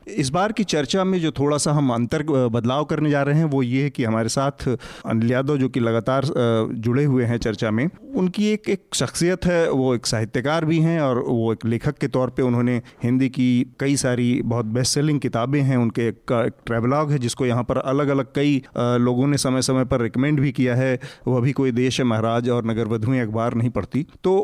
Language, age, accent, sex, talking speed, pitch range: Hindi, 40-59, native, male, 215 wpm, 120-145 Hz